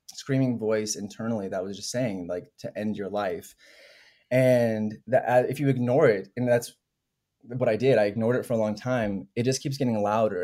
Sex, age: male, 20-39